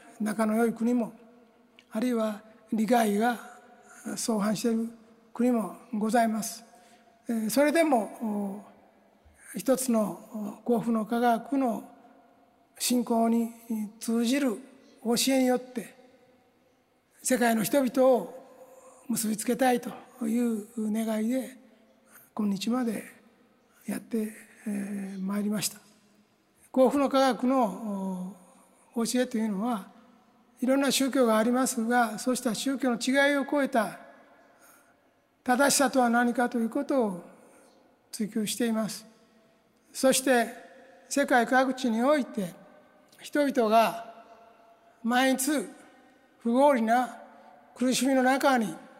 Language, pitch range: Japanese, 225-255 Hz